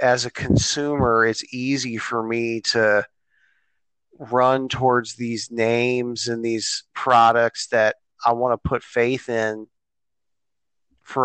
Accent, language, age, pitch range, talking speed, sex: American, English, 30-49, 110-125 Hz, 125 wpm, male